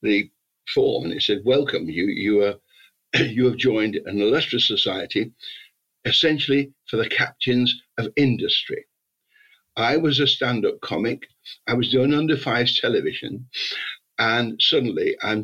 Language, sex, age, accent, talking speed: English, male, 60-79, British, 130 wpm